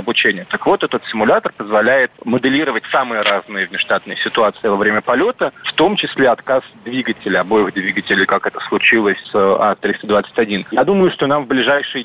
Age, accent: 30-49, native